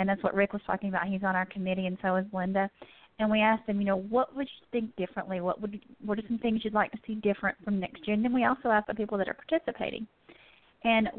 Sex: female